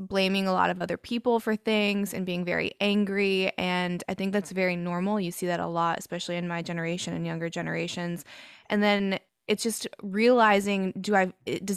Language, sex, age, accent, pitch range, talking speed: English, female, 20-39, American, 175-205 Hz, 195 wpm